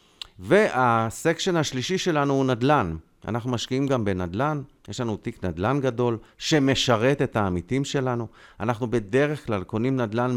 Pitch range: 95-130 Hz